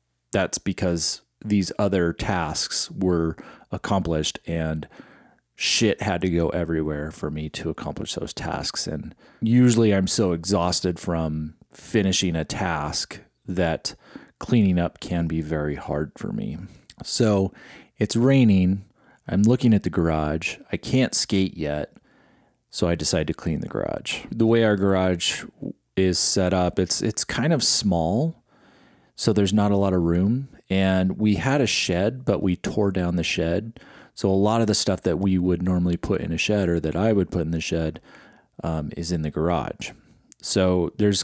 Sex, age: male, 30-49